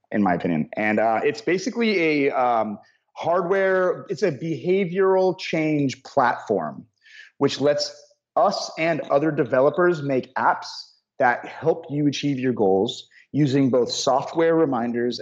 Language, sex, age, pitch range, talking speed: English, male, 30-49, 110-155 Hz, 130 wpm